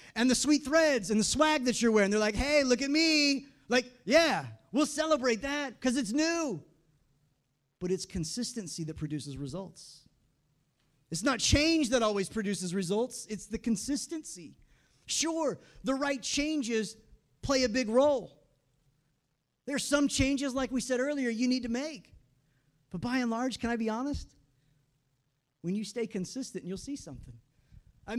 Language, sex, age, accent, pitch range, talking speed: English, male, 30-49, American, 170-260 Hz, 160 wpm